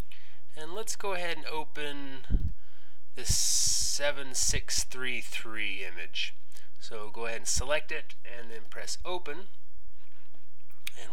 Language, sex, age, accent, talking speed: English, male, 20-39, American, 110 wpm